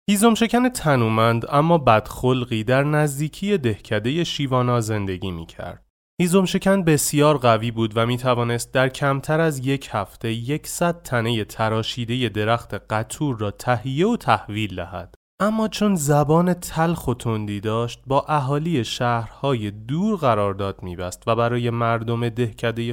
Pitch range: 105-155 Hz